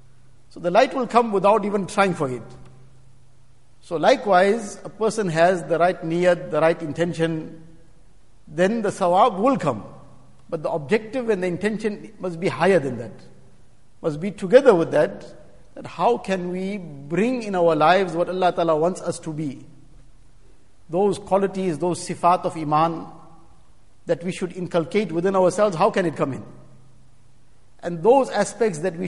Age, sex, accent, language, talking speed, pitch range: 60-79, male, Indian, English, 165 wpm, 155-190 Hz